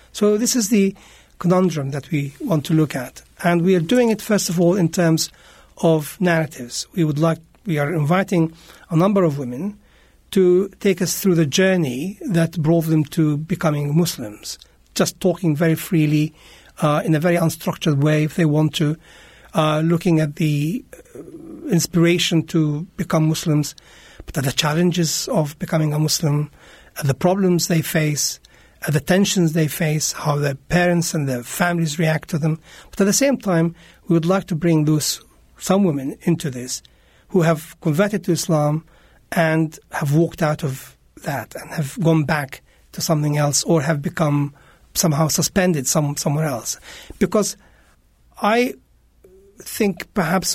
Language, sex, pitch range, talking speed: English, male, 150-180 Hz, 165 wpm